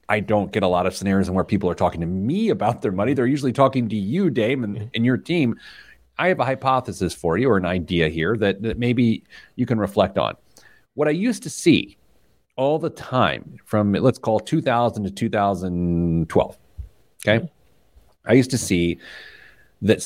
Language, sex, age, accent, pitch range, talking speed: English, male, 40-59, American, 105-160 Hz, 190 wpm